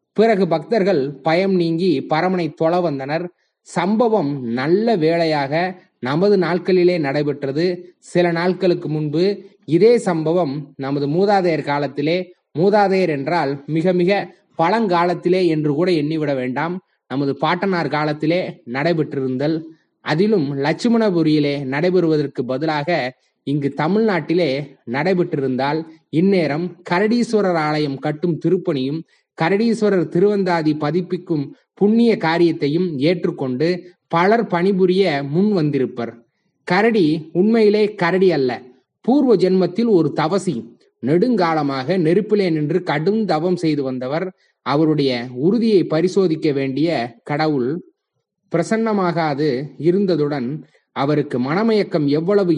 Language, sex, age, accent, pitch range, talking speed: Tamil, male, 20-39, native, 150-185 Hz, 90 wpm